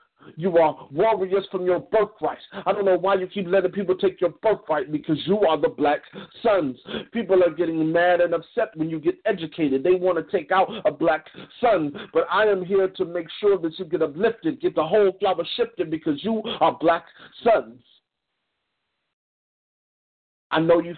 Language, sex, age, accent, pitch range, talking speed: English, male, 40-59, American, 160-195 Hz, 185 wpm